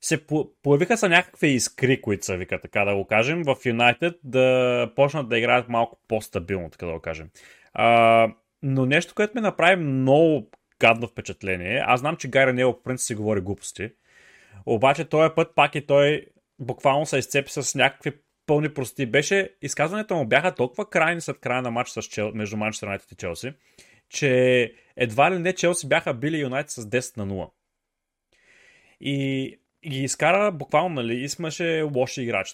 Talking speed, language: 170 wpm, Bulgarian